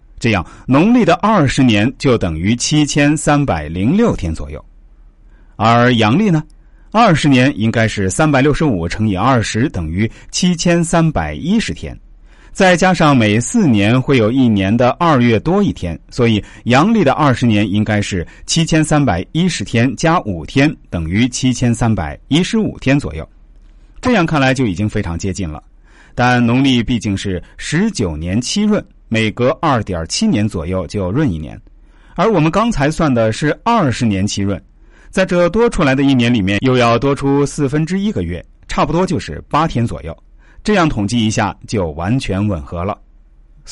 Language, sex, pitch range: Chinese, male, 100-150 Hz